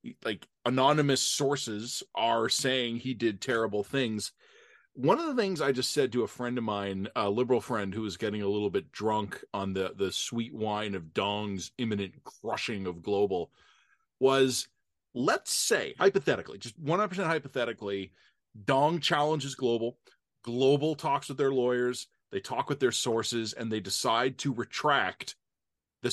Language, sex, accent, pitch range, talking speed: English, male, American, 110-140 Hz, 155 wpm